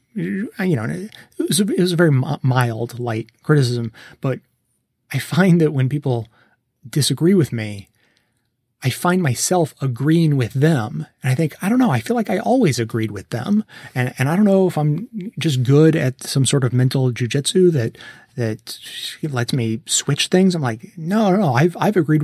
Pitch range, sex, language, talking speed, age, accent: 120-155 Hz, male, English, 190 wpm, 30-49, American